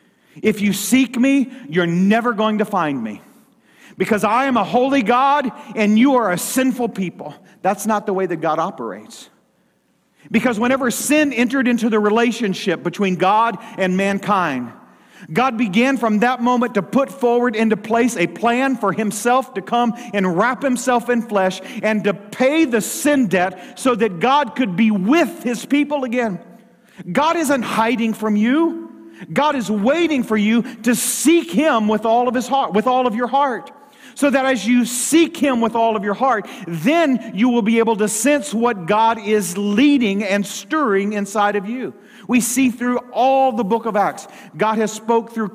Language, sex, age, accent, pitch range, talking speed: English, male, 40-59, American, 205-255 Hz, 180 wpm